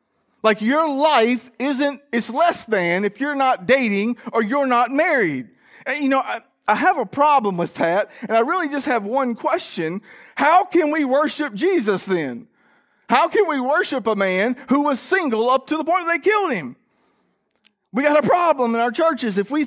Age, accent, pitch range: 40-59, American, 225-280 Hz